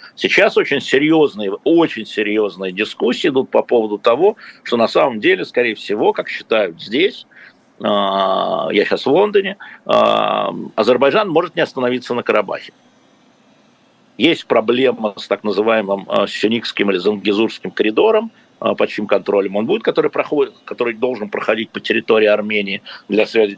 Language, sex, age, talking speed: Russian, male, 50-69, 130 wpm